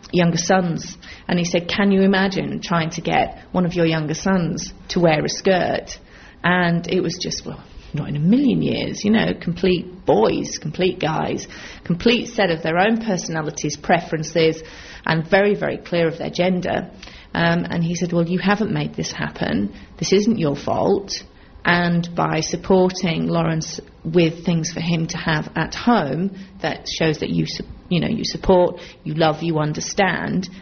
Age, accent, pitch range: 30-49, British, 165-190 Hz